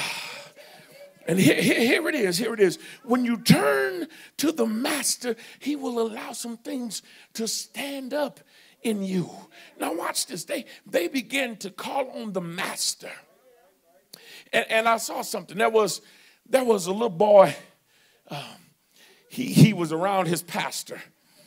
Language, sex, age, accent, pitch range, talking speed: English, male, 50-69, American, 180-245 Hz, 150 wpm